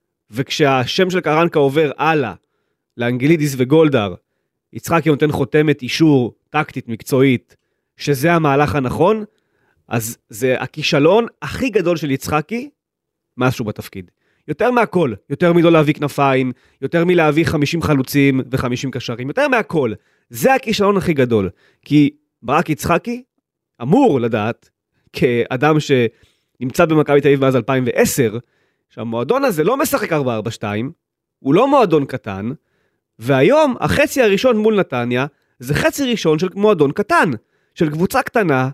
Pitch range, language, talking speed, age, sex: 130-195 Hz, Hebrew, 125 wpm, 30-49, male